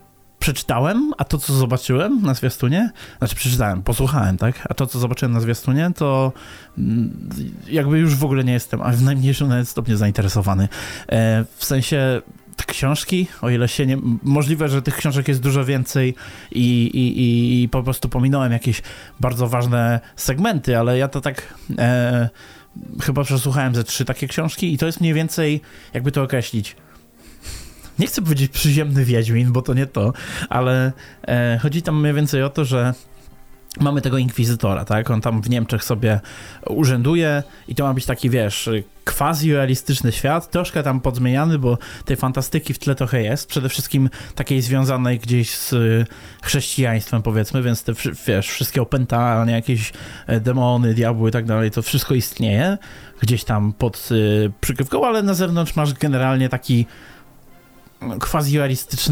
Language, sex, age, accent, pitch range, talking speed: Polish, male, 20-39, native, 115-140 Hz, 160 wpm